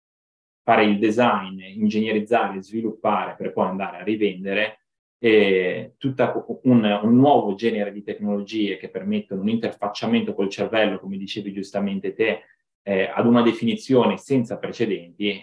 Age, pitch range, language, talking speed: 20-39, 100-115 Hz, Italian, 130 wpm